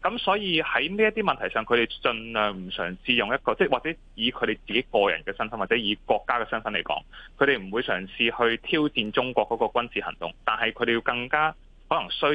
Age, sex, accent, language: 20-39, male, native, Chinese